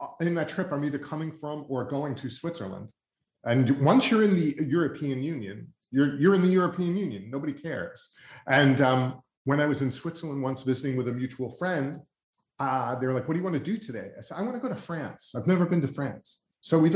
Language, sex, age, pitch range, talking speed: English, male, 30-49, 125-175 Hz, 225 wpm